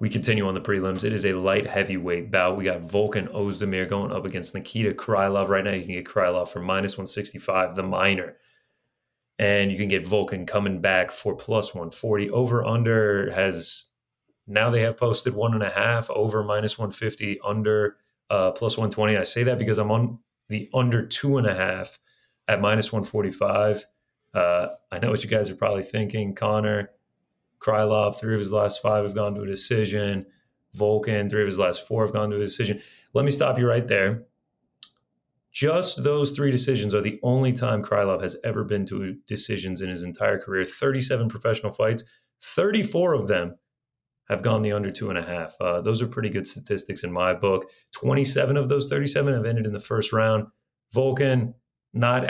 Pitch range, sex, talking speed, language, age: 100-115 Hz, male, 190 wpm, English, 30-49